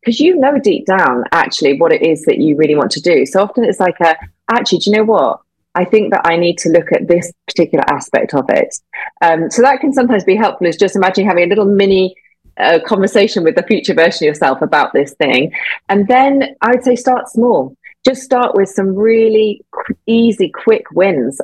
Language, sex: English, female